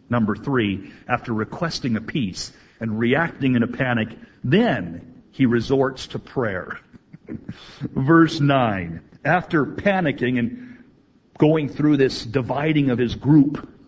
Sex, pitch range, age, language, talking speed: male, 110-150 Hz, 50-69, English, 120 wpm